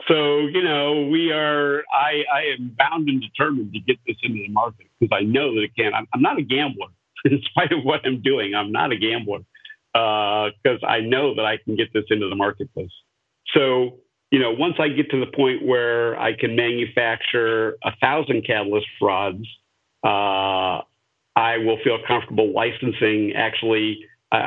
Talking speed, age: 185 wpm, 50-69